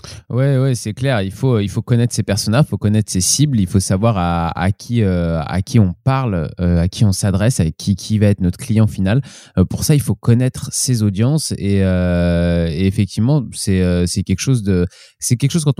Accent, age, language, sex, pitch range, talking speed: French, 20-39, French, male, 95-120 Hz, 230 wpm